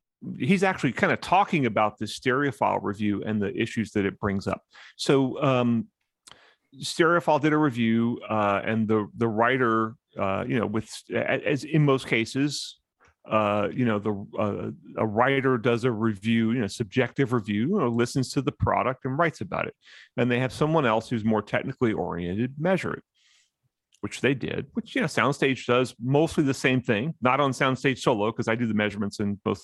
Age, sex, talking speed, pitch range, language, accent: 40-59, male, 185 wpm, 110-140 Hz, English, American